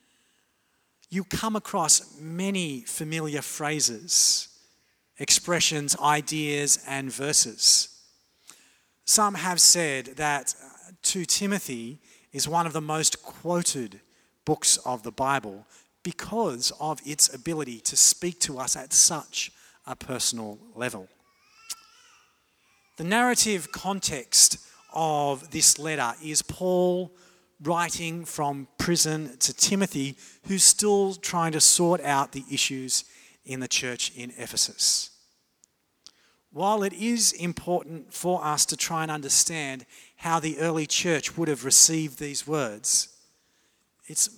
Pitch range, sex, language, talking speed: 135-180 Hz, male, English, 115 wpm